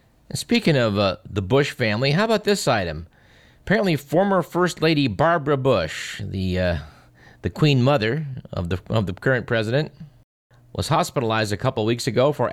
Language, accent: English, American